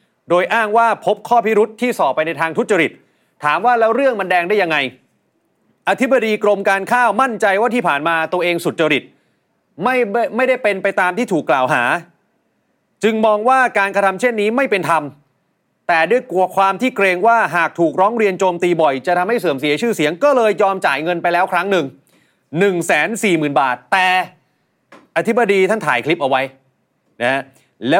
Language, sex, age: Thai, male, 30-49